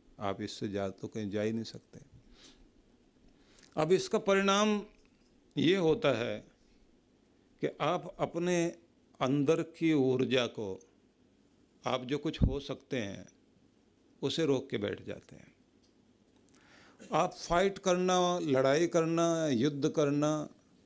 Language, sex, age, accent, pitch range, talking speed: Hindi, male, 50-69, native, 120-165 Hz, 120 wpm